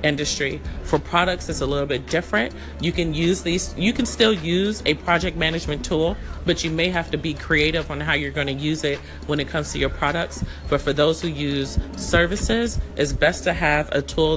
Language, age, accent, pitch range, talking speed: English, 40-59, American, 135-170 Hz, 215 wpm